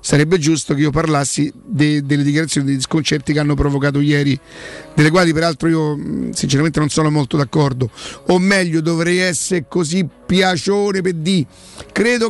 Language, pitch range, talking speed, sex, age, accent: Italian, 145-180 Hz, 155 wpm, male, 50-69, native